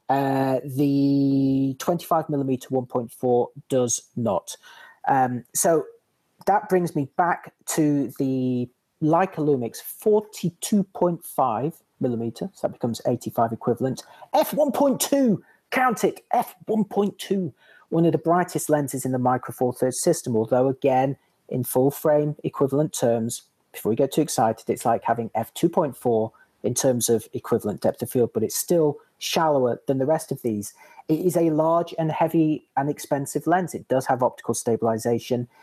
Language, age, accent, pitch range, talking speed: English, 40-59, British, 125-165 Hz, 150 wpm